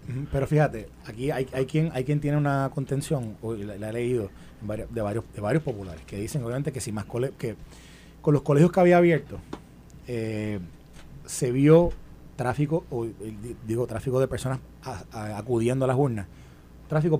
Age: 30-49